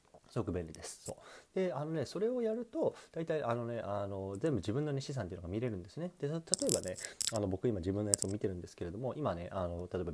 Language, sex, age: Japanese, male, 30-49